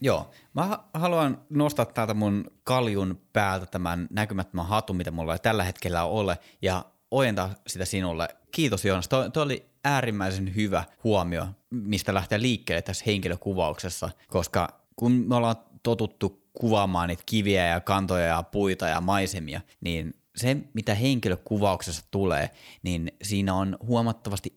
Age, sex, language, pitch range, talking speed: 30-49, male, Finnish, 90-110 Hz, 135 wpm